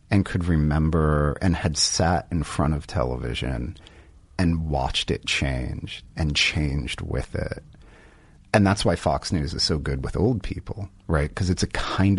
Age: 40-59